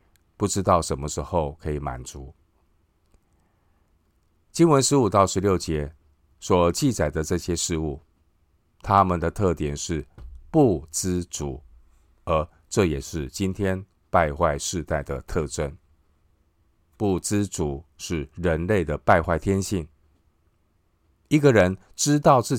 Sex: male